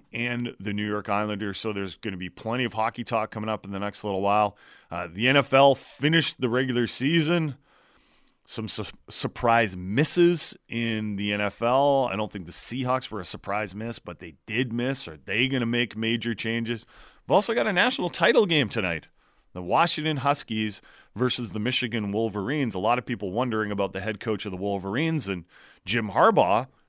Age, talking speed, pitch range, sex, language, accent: 30-49, 185 wpm, 100-130 Hz, male, English, American